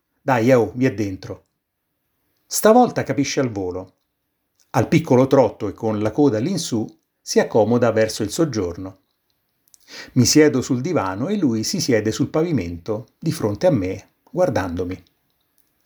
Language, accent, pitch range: Italian, native, 110-150 Hz